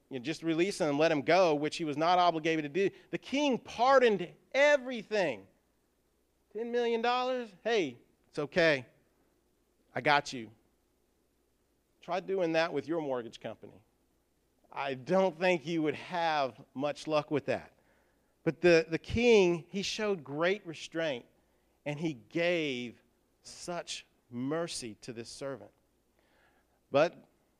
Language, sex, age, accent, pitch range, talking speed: English, male, 40-59, American, 140-205 Hz, 135 wpm